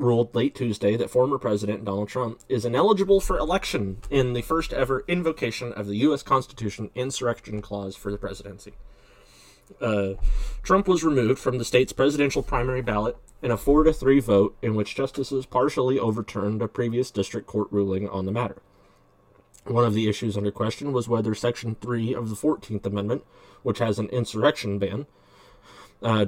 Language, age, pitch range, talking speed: English, 30-49, 100-120 Hz, 170 wpm